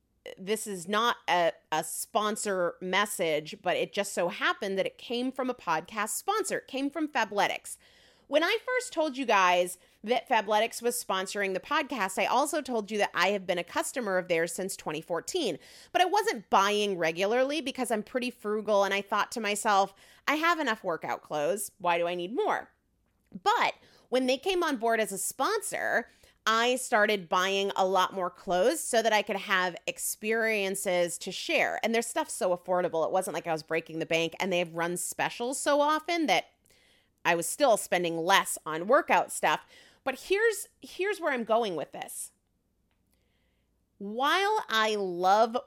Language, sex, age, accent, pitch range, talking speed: English, female, 30-49, American, 180-260 Hz, 180 wpm